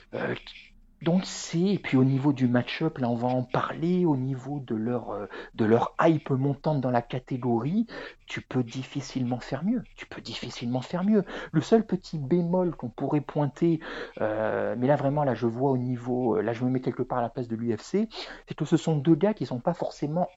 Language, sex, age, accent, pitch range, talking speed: French, male, 50-69, French, 125-170 Hz, 210 wpm